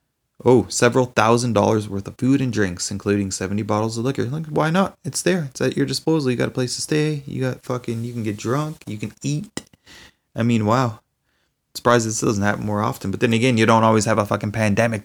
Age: 20-39